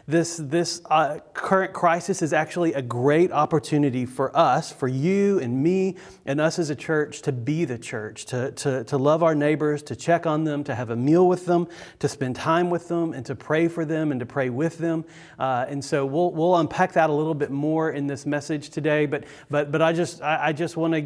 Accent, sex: American, male